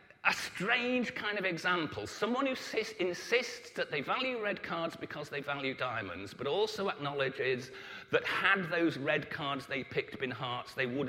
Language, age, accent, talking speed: English, 40-59, British, 175 wpm